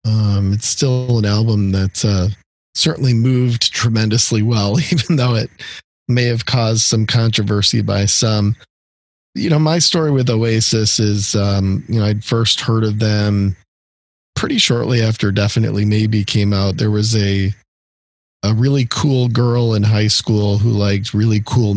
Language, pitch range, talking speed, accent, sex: English, 95-115 Hz, 155 wpm, American, male